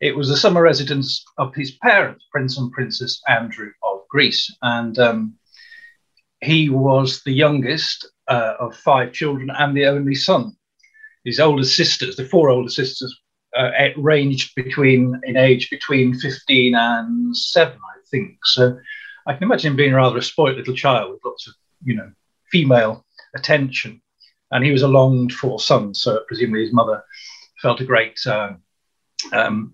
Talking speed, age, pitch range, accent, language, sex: 160 wpm, 40-59, 125-155 Hz, British, English, male